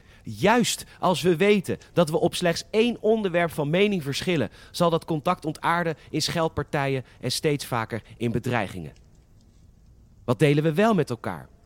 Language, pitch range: Dutch, 115-165 Hz